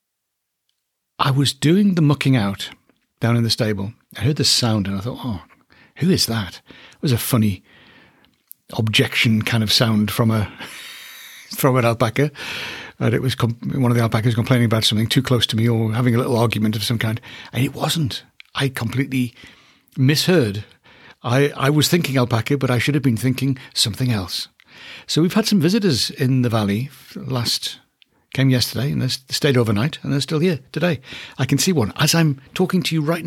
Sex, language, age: male, English, 60-79